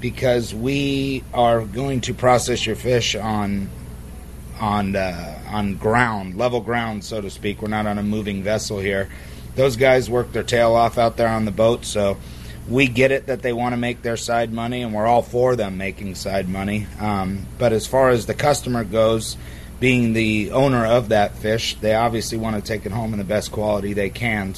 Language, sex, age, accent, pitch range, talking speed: English, male, 30-49, American, 105-120 Hz, 205 wpm